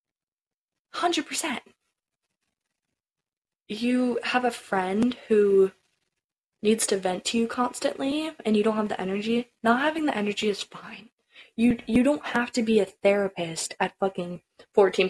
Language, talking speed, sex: English, 140 wpm, female